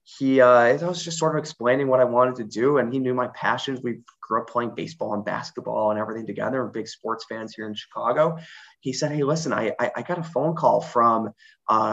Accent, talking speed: American, 235 wpm